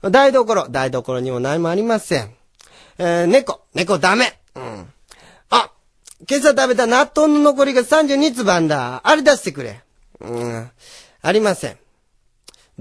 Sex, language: male, Japanese